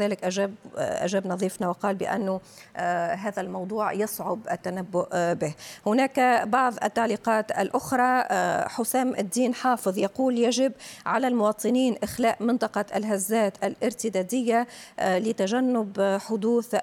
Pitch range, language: 190-245 Hz, Arabic